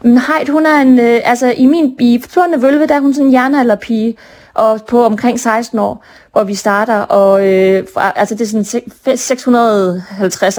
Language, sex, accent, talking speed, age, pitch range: Danish, female, native, 180 wpm, 30-49, 220-270 Hz